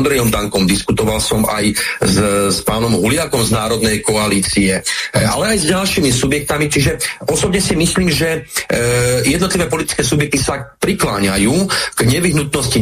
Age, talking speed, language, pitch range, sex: 40-59, 140 wpm, Slovak, 125-170 Hz, male